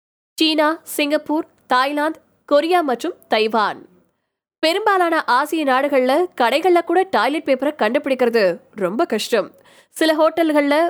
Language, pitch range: Tamil, 255-320 Hz